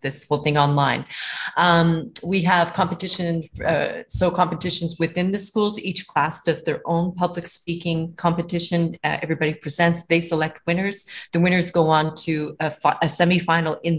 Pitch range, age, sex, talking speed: 150-175 Hz, 30-49, female, 165 wpm